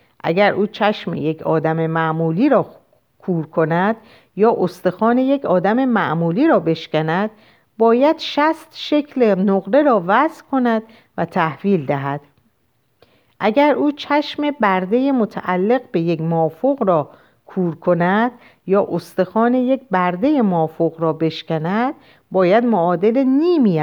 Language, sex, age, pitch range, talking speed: Persian, female, 50-69, 165-240 Hz, 120 wpm